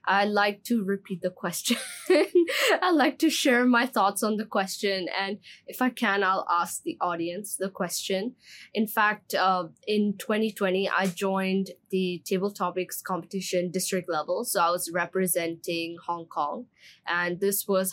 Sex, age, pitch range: female, 20-39, 185-240 Hz